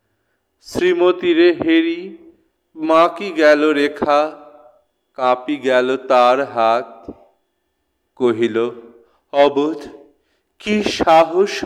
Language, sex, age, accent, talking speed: Bengali, male, 40-59, native, 70 wpm